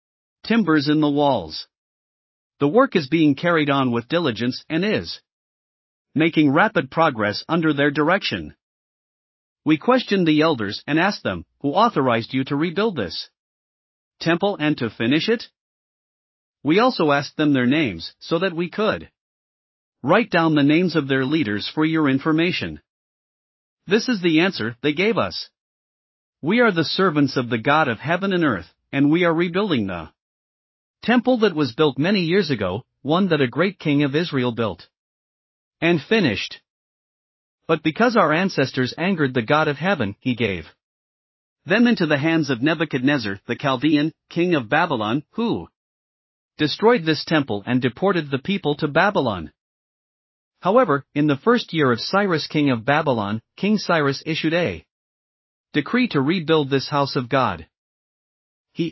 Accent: American